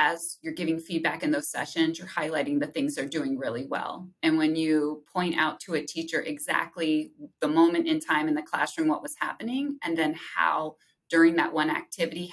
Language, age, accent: English, 20-39, American